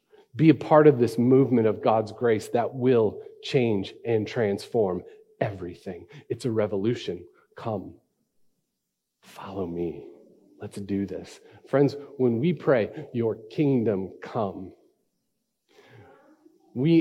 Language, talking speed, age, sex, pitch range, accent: English, 115 wpm, 40-59, male, 130-180 Hz, American